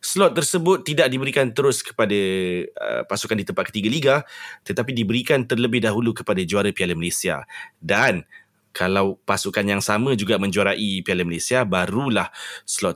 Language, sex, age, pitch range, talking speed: Malay, male, 30-49, 100-130 Hz, 145 wpm